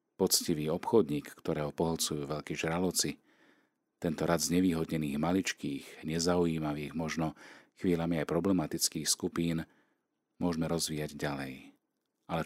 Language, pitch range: Slovak, 75-95 Hz